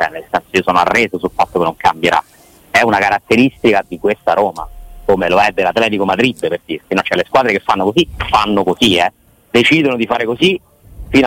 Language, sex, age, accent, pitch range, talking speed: Italian, male, 30-49, native, 95-135 Hz, 190 wpm